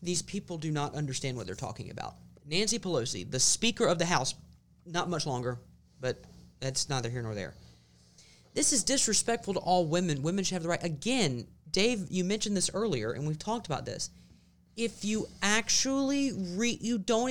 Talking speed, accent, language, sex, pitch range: 185 wpm, American, English, male, 130-210 Hz